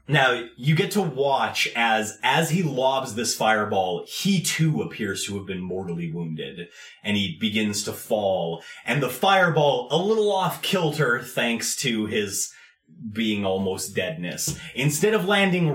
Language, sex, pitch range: English, male, 100-145 Hz